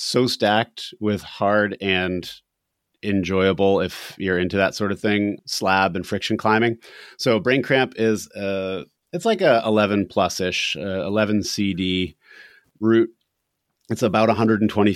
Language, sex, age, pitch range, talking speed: English, male, 30-49, 95-110 Hz, 135 wpm